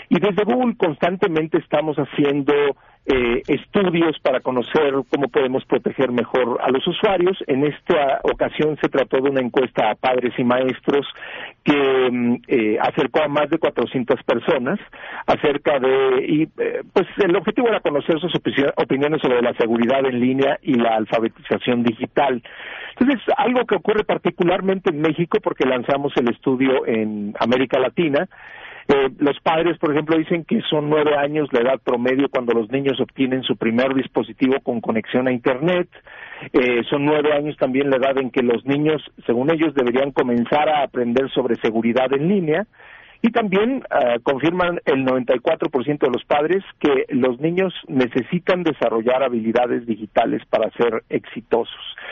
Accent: Mexican